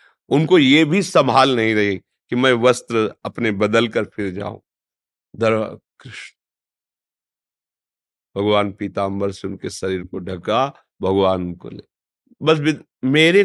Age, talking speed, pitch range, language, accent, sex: 50-69, 125 wpm, 120-185 Hz, Hindi, native, male